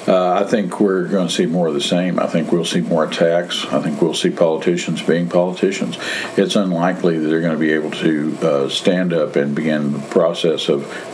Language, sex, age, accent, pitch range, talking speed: English, male, 50-69, American, 80-90 Hz, 220 wpm